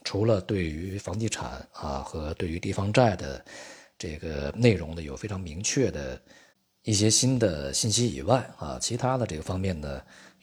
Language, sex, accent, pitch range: Chinese, male, native, 75-105 Hz